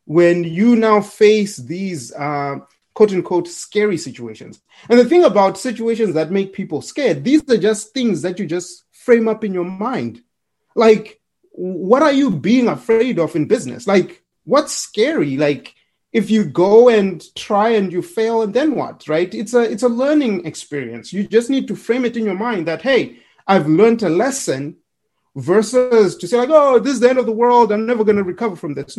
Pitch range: 170-230 Hz